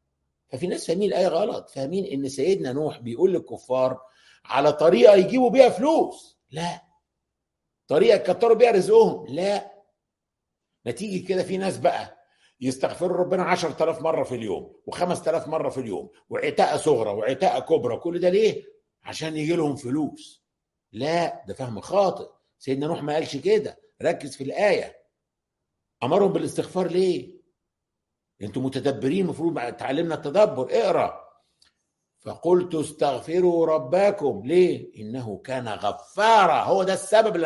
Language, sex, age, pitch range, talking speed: Arabic, male, 60-79, 155-245 Hz, 125 wpm